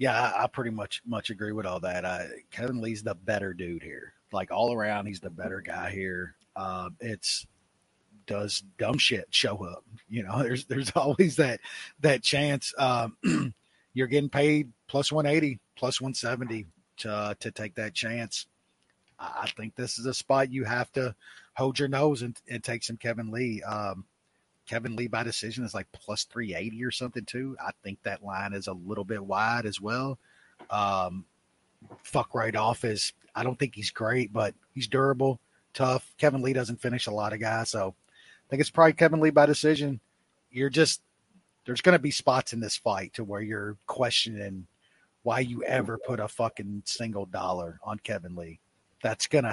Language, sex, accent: English, male, American